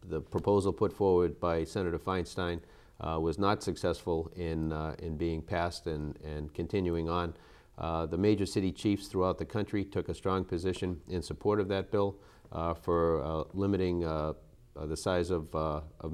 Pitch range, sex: 80-95 Hz, male